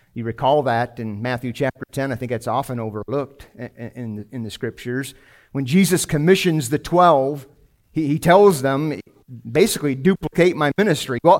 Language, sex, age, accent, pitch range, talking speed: English, male, 50-69, American, 115-155 Hz, 140 wpm